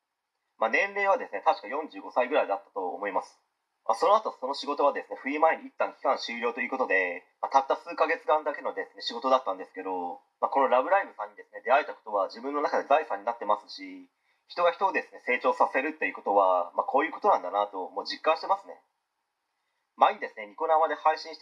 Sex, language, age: male, Japanese, 30-49